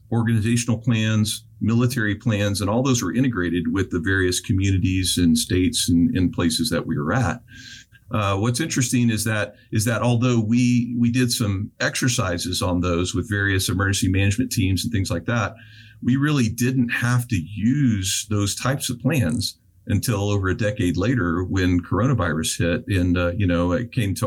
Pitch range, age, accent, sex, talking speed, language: 95-125 Hz, 50-69, American, male, 175 wpm, English